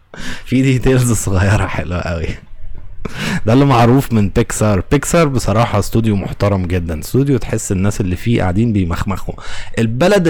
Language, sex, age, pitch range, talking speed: Arabic, male, 20-39, 90-120 Hz, 140 wpm